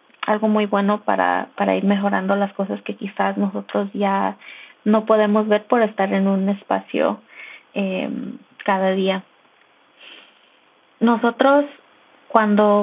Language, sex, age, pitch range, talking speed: English, female, 20-39, 200-230 Hz, 120 wpm